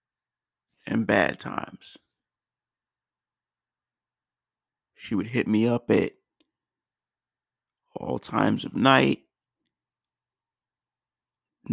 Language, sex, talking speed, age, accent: English, male, 70 wpm, 50-69, American